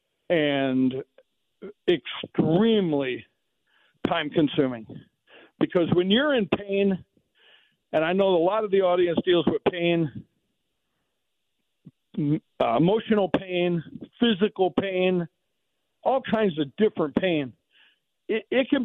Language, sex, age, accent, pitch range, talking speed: English, male, 50-69, American, 155-200 Hz, 100 wpm